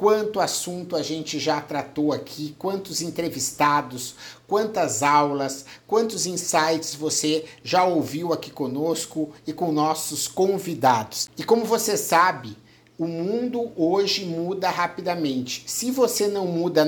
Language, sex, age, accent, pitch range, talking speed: Portuguese, male, 50-69, Brazilian, 155-205 Hz, 125 wpm